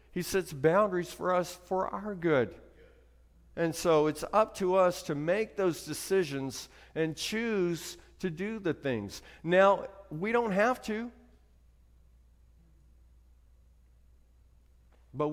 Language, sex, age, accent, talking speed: English, male, 50-69, American, 115 wpm